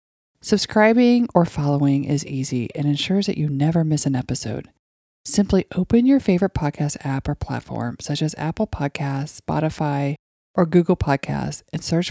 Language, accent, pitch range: English, American, 140-185 Hz